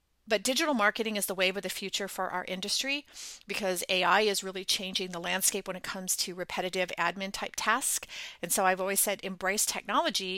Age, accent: 40-59, American